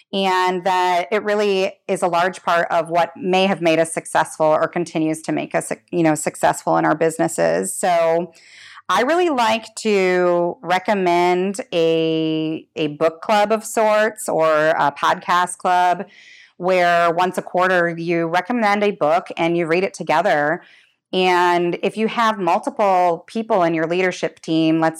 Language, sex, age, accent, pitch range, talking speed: English, female, 30-49, American, 160-185 Hz, 160 wpm